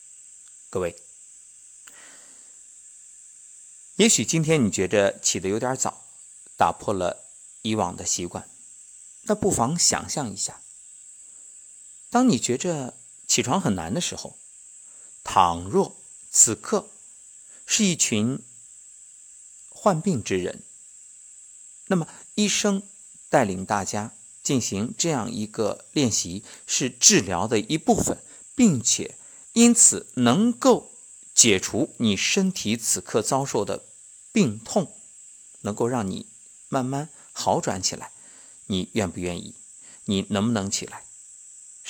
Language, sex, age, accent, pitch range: Chinese, male, 50-69, native, 110-180 Hz